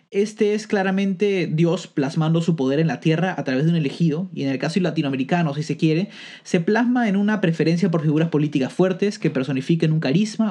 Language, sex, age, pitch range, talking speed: Spanish, male, 30-49, 155-200 Hz, 205 wpm